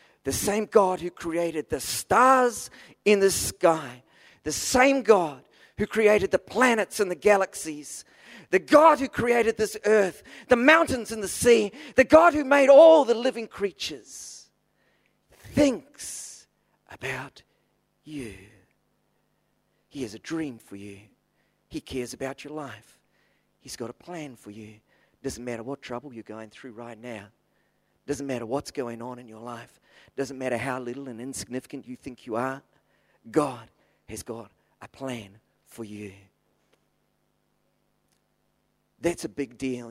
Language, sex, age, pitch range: English, male, 40-59, 120-185 Hz